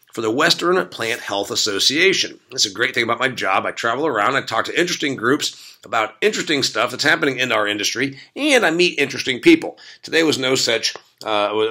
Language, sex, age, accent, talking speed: English, male, 50-69, American, 200 wpm